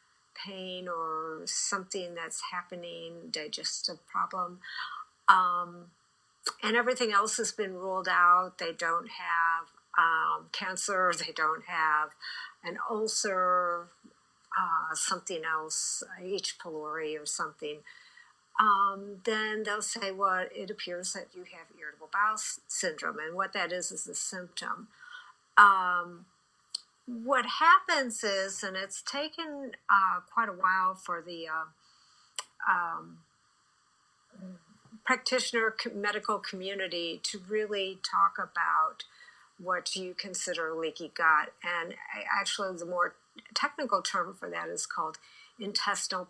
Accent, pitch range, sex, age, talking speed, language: American, 170-215 Hz, female, 50-69, 120 wpm, English